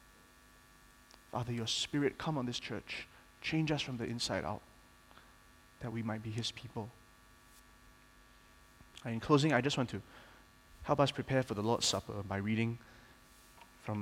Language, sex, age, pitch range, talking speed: English, male, 20-39, 105-130 Hz, 150 wpm